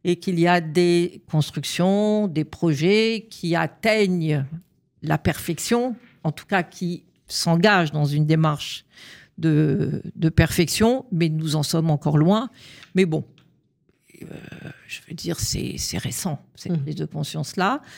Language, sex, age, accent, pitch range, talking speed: French, female, 50-69, French, 150-180 Hz, 135 wpm